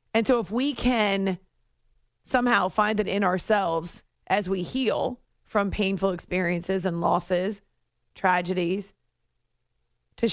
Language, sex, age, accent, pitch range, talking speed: English, female, 30-49, American, 185-235 Hz, 115 wpm